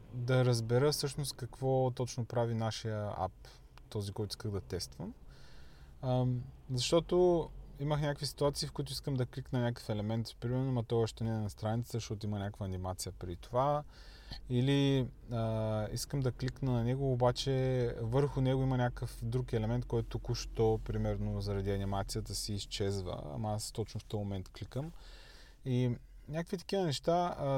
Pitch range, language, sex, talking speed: 110-140 Hz, Bulgarian, male, 155 wpm